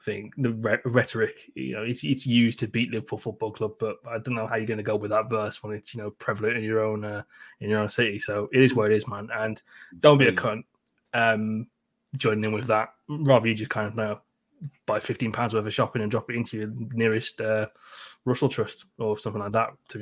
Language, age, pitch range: English, 20-39, 110-130 Hz